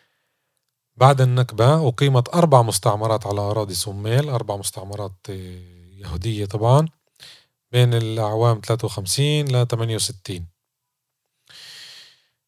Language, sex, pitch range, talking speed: Arabic, male, 105-125 Hz, 80 wpm